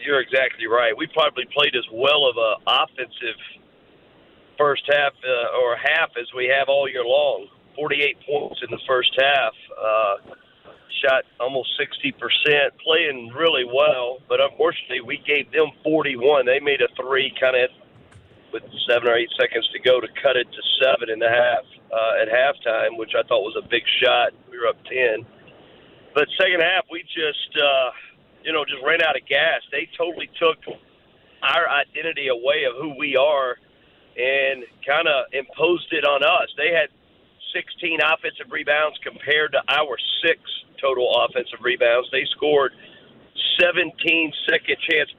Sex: male